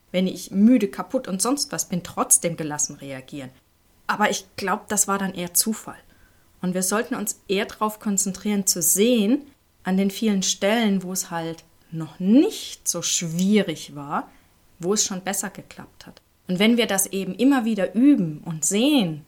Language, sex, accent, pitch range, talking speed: German, female, German, 165-205 Hz, 175 wpm